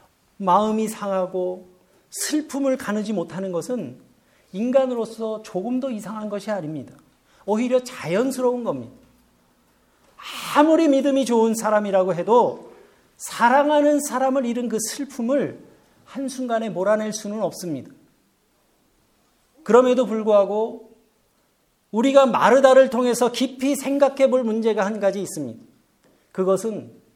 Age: 40-59